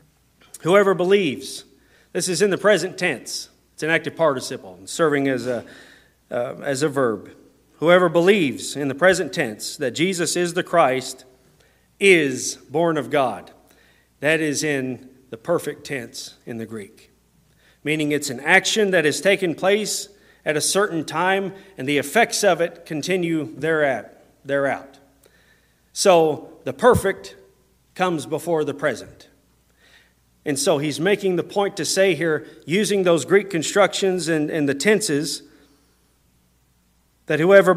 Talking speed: 140 wpm